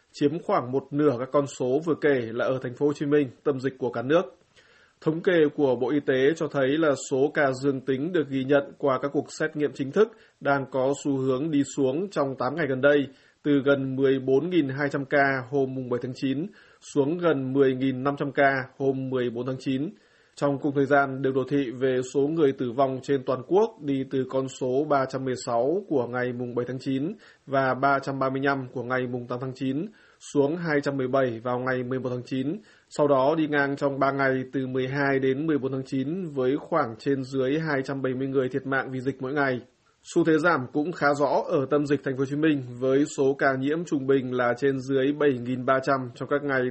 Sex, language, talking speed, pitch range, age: male, Vietnamese, 210 wpm, 130-145 Hz, 20-39